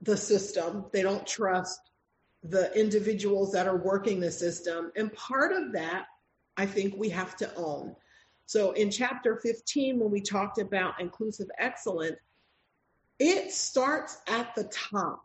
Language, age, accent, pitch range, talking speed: English, 50-69, American, 200-285 Hz, 145 wpm